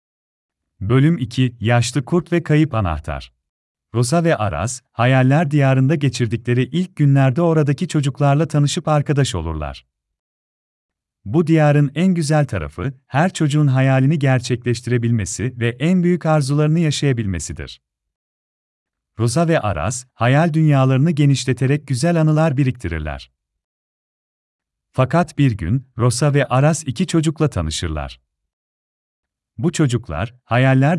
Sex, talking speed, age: male, 105 wpm, 40-59